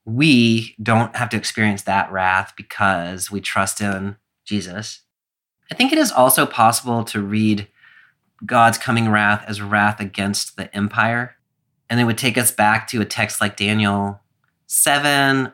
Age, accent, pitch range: 30-49, American, 100-120 Hz